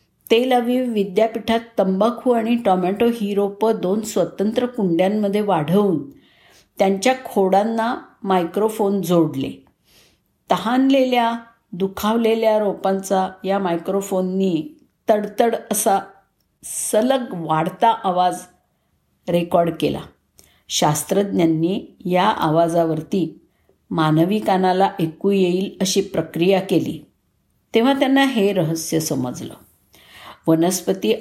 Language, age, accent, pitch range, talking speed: Marathi, 50-69, native, 180-230 Hz, 85 wpm